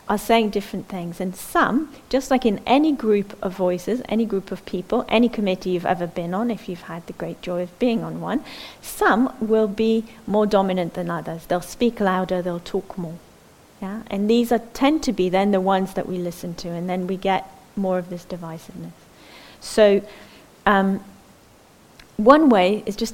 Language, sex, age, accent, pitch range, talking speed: English, female, 40-59, British, 185-225 Hz, 190 wpm